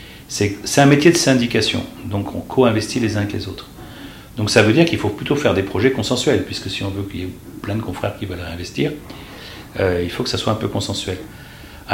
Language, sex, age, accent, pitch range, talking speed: French, male, 40-59, French, 95-120 Hz, 240 wpm